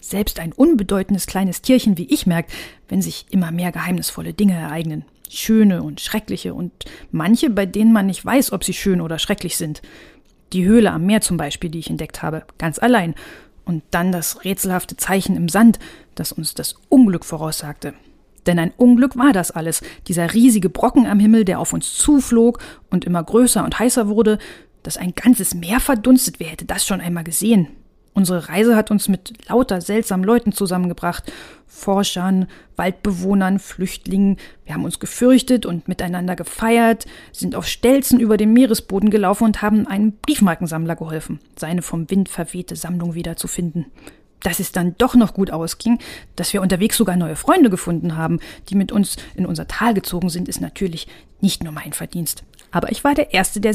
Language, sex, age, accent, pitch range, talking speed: German, female, 40-59, German, 175-225 Hz, 175 wpm